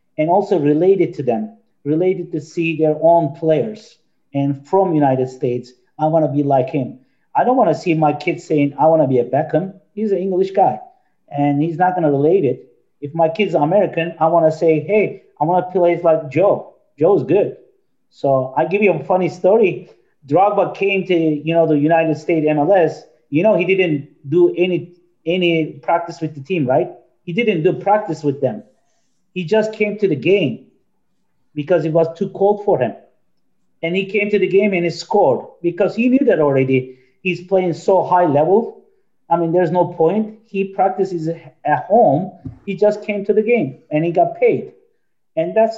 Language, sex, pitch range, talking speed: English, male, 150-195 Hz, 195 wpm